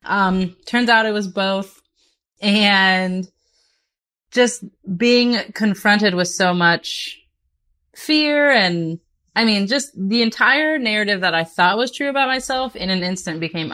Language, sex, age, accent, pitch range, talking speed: English, female, 20-39, American, 170-215 Hz, 140 wpm